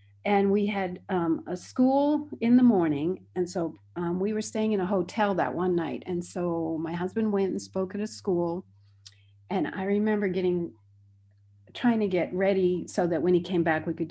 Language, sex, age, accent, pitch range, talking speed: English, female, 40-59, American, 165-220 Hz, 200 wpm